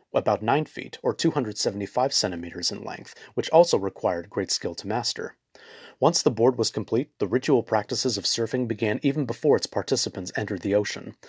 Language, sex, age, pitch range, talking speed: English, male, 30-49, 100-130 Hz, 175 wpm